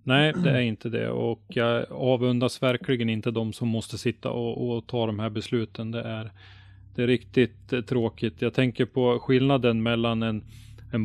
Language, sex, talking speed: Swedish, male, 180 wpm